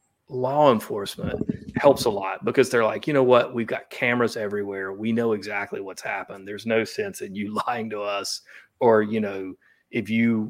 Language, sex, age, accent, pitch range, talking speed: English, male, 40-59, American, 105-130 Hz, 190 wpm